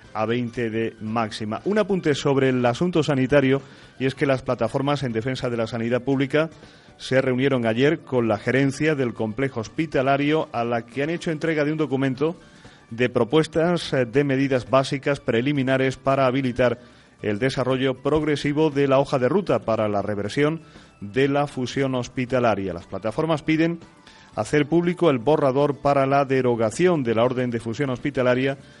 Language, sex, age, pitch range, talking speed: Spanish, male, 40-59, 120-145 Hz, 165 wpm